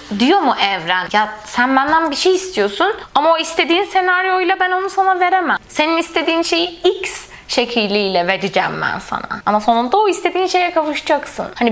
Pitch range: 210-330 Hz